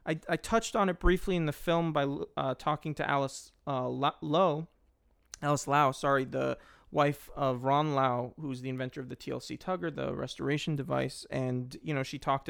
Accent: American